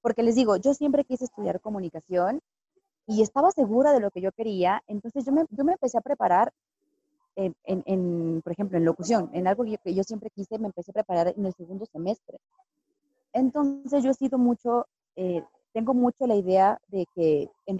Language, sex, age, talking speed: Spanish, female, 20-39, 200 wpm